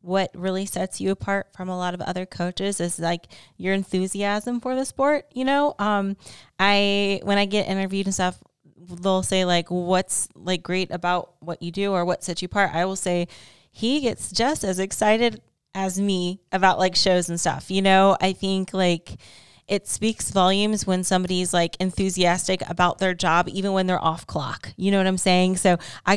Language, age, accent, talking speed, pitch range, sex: English, 20-39, American, 200 wpm, 175-200 Hz, female